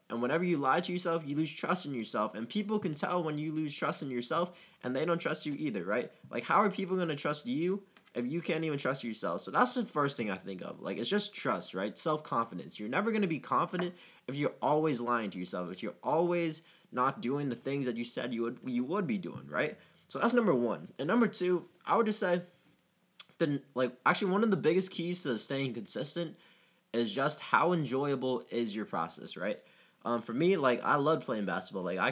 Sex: male